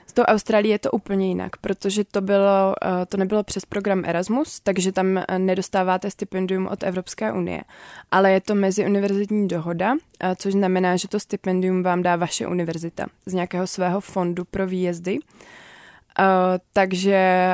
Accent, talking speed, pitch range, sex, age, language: native, 145 wpm, 180-200 Hz, female, 20-39, Czech